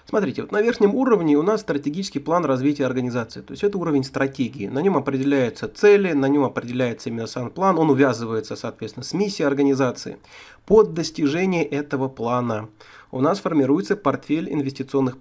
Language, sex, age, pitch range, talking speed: Russian, male, 30-49, 125-165 Hz, 160 wpm